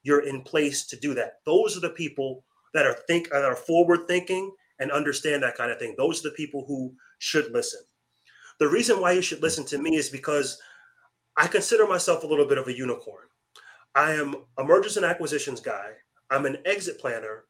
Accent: American